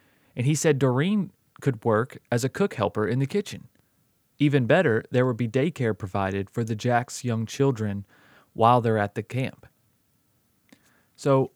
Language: English